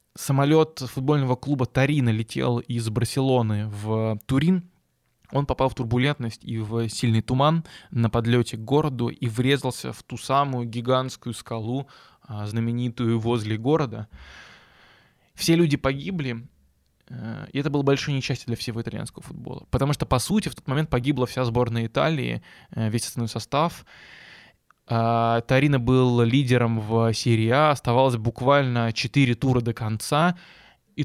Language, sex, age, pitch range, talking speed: Russian, male, 20-39, 115-145 Hz, 135 wpm